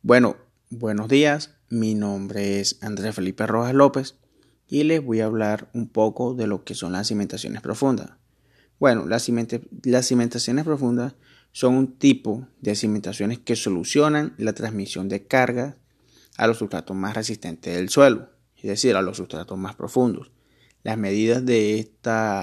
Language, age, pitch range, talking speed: Spanish, 30-49, 105-125 Hz, 160 wpm